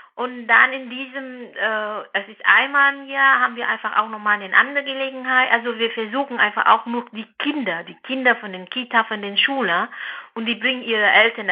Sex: female